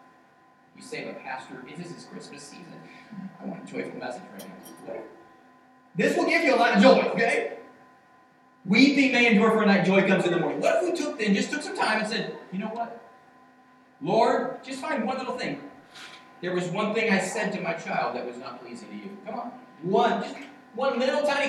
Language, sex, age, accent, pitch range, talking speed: English, male, 40-59, American, 180-255 Hz, 220 wpm